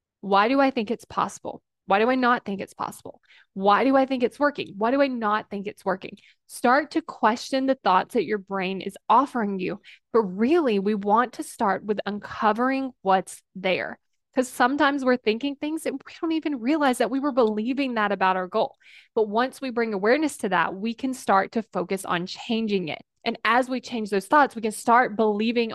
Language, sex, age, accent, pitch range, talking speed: English, female, 20-39, American, 200-260 Hz, 210 wpm